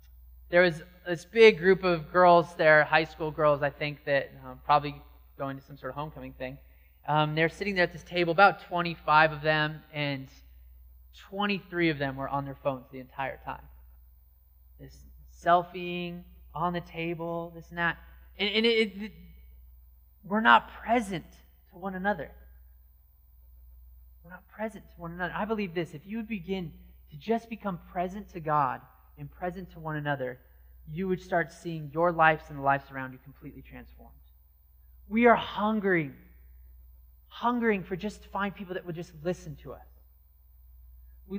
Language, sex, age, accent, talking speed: English, male, 20-39, American, 170 wpm